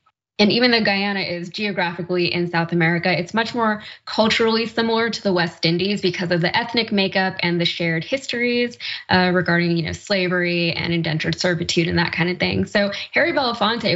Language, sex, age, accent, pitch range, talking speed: English, female, 10-29, American, 175-205 Hz, 180 wpm